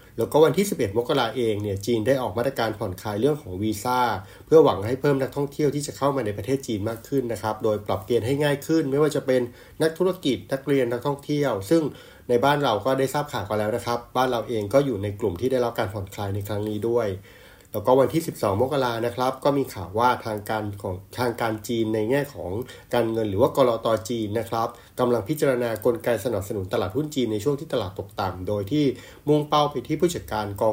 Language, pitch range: Thai, 110-135 Hz